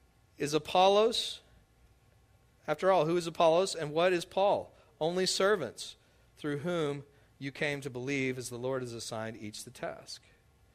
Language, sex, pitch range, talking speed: English, male, 140-205 Hz, 150 wpm